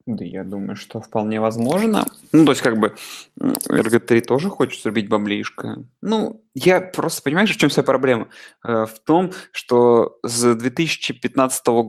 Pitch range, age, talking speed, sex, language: 120-150 Hz, 20-39, 145 wpm, male, Russian